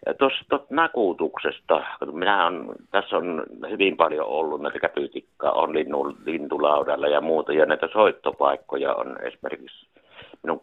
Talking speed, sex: 115 wpm, male